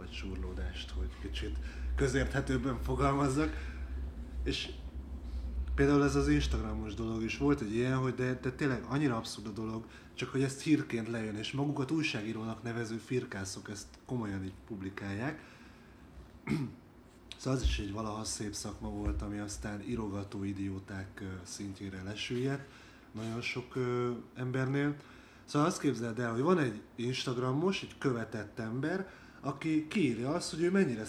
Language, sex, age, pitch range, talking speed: Hungarian, male, 30-49, 105-140 Hz, 135 wpm